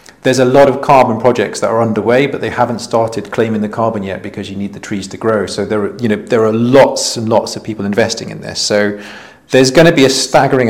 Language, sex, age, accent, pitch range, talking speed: English, male, 40-59, British, 105-135 Hz, 260 wpm